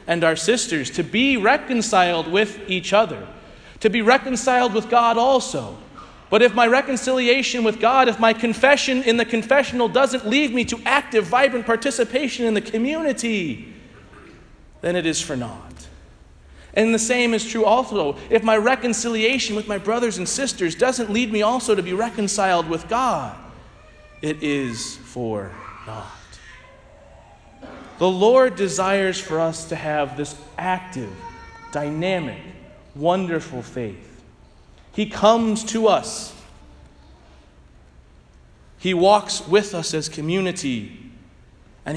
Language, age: English, 30-49